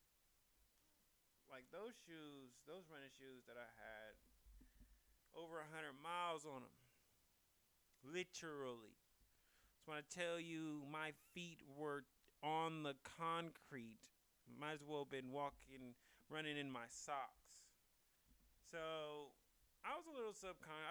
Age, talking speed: 30-49, 130 wpm